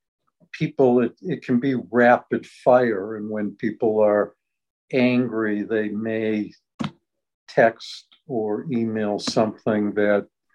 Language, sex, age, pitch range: English, male, 60-79, 105-125 Hz